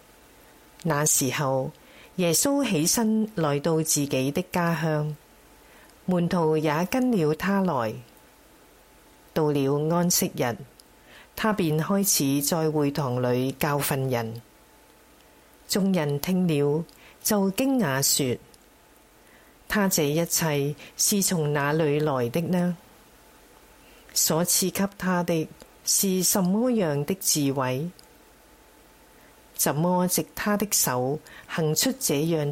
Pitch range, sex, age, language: 145-185 Hz, female, 40-59, Chinese